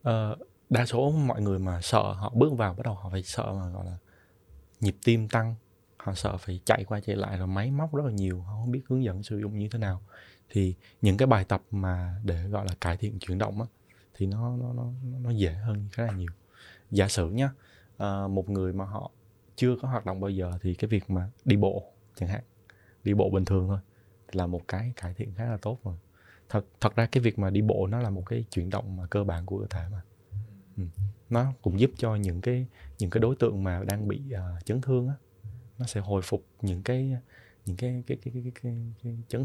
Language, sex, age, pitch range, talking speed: Vietnamese, male, 20-39, 95-120 Hz, 240 wpm